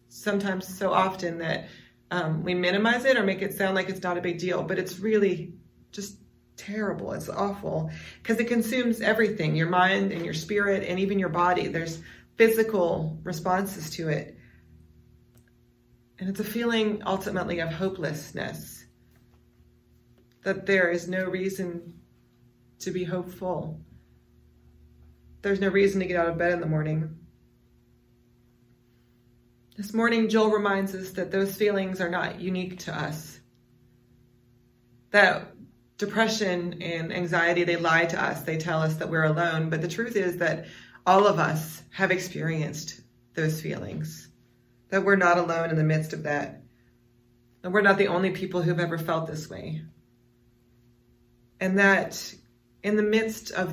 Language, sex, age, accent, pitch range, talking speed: English, female, 30-49, American, 120-190 Hz, 150 wpm